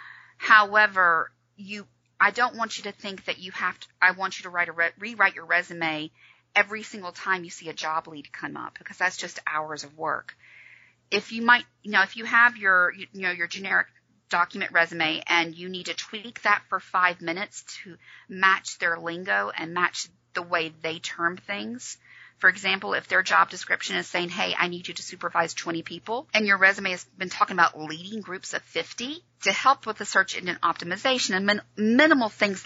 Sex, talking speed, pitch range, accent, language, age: female, 200 wpm, 170-210 Hz, American, English, 40-59